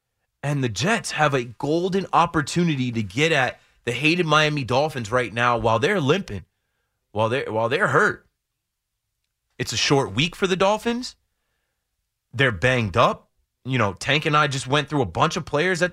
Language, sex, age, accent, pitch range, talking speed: English, male, 30-49, American, 120-180 Hz, 175 wpm